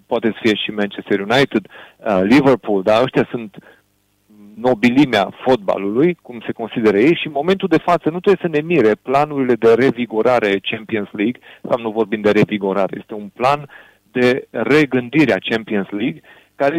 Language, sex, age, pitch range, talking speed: Romanian, male, 40-59, 115-160 Hz, 165 wpm